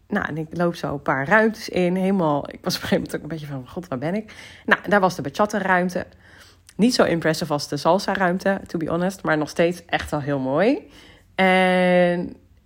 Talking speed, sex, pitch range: 225 wpm, female, 155-215 Hz